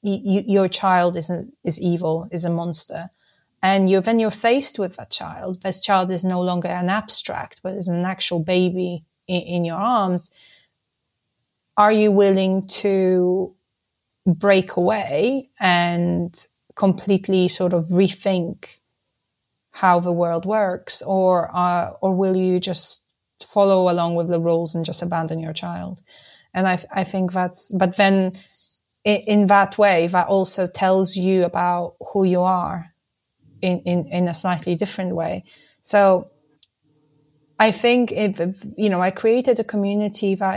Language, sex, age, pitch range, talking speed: English, female, 30-49, 175-195 Hz, 150 wpm